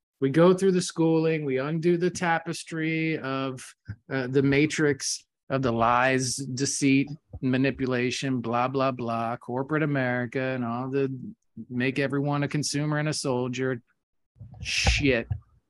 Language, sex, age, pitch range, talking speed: English, male, 30-49, 130-160 Hz, 130 wpm